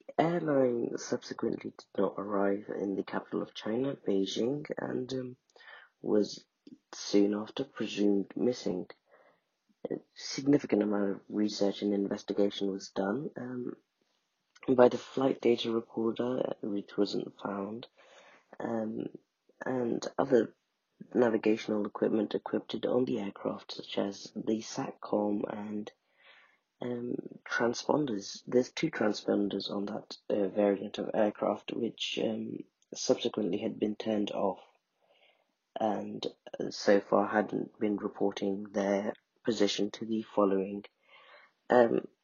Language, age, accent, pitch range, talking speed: English, 30-49, British, 100-120 Hz, 115 wpm